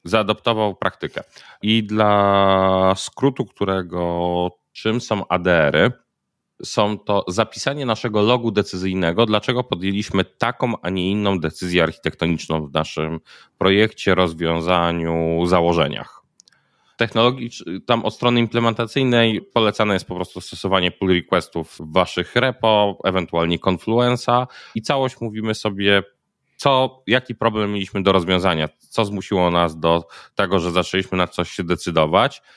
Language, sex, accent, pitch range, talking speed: Polish, male, native, 90-120 Hz, 120 wpm